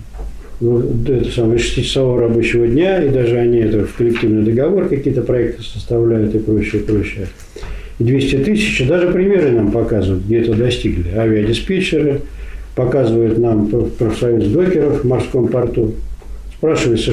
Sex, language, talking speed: male, Russian, 135 wpm